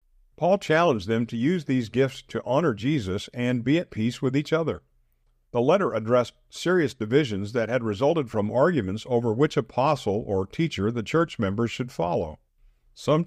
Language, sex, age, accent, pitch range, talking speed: English, male, 50-69, American, 100-140 Hz, 170 wpm